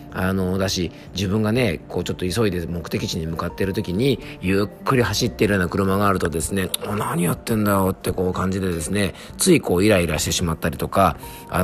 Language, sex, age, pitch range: Japanese, male, 40-59, 85-115 Hz